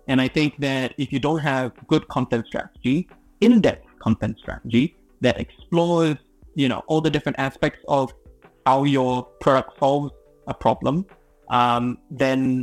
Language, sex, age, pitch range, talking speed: English, male, 30-49, 130-155 Hz, 145 wpm